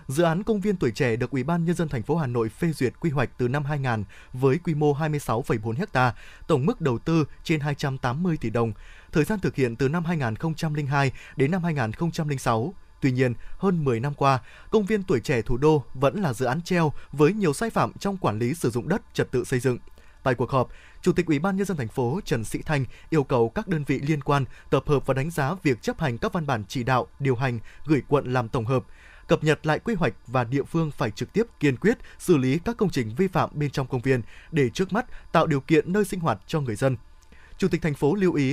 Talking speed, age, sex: 250 wpm, 20-39, male